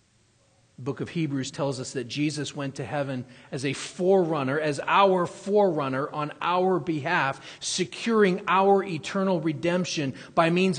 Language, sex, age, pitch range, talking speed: English, male, 40-59, 120-170 Hz, 145 wpm